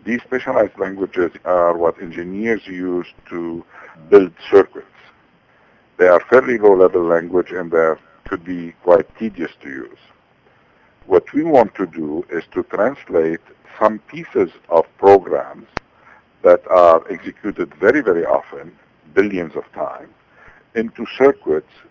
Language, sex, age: English, male, 60-79